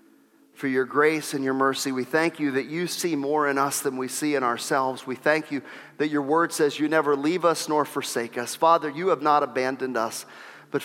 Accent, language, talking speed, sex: American, English, 225 wpm, male